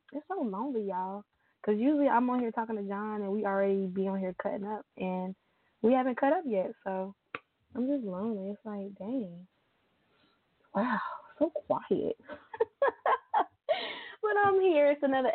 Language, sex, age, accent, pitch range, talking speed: English, female, 20-39, American, 185-235 Hz, 160 wpm